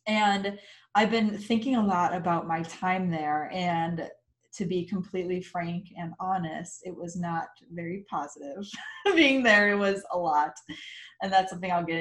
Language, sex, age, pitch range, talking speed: English, female, 20-39, 170-210 Hz, 165 wpm